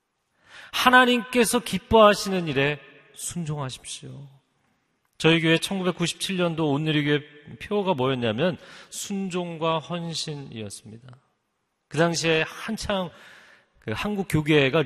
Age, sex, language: 40-59, male, Korean